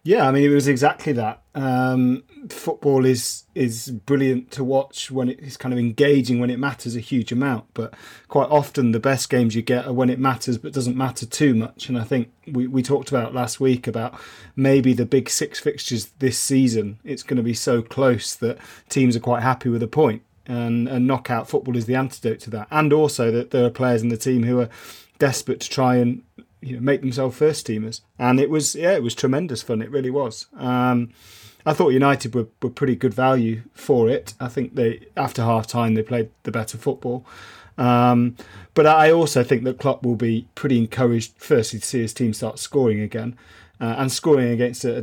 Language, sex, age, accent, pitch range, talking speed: English, male, 30-49, British, 115-135 Hz, 210 wpm